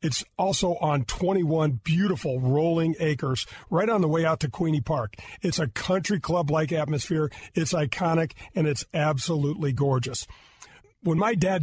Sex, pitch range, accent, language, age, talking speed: male, 145-180 Hz, American, English, 40-59, 150 wpm